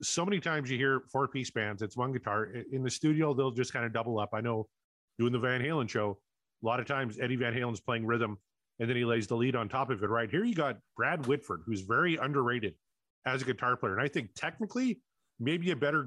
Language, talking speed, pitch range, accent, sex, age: English, 245 wpm, 115-140 Hz, American, male, 30-49